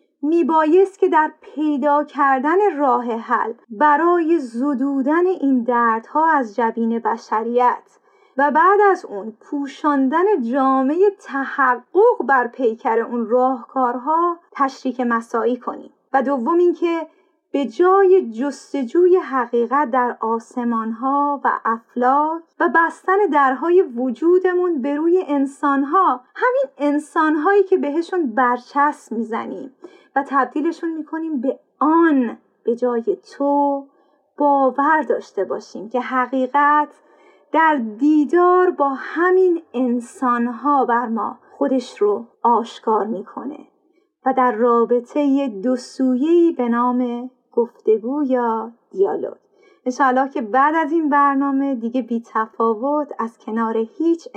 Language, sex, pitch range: Persian, female, 245-330 Hz